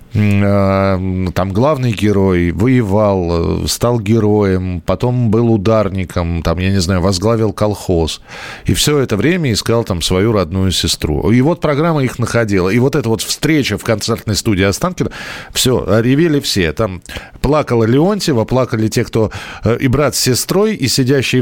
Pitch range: 105-150 Hz